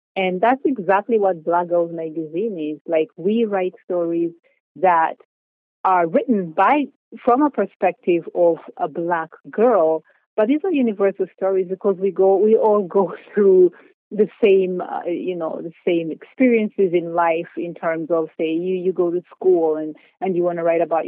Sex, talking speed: female, 175 wpm